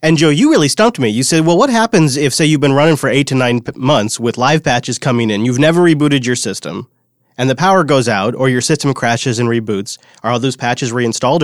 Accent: American